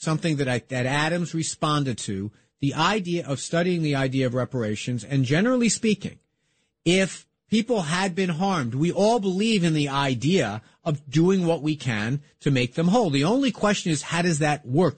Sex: male